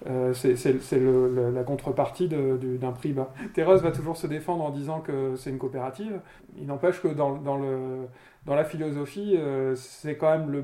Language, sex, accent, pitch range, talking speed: French, male, French, 130-160 Hz, 210 wpm